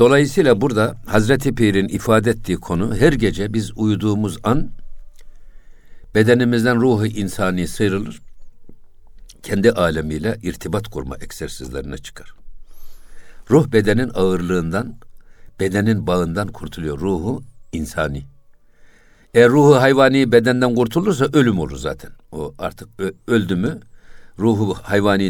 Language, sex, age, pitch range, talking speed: Turkish, male, 60-79, 85-115 Hz, 105 wpm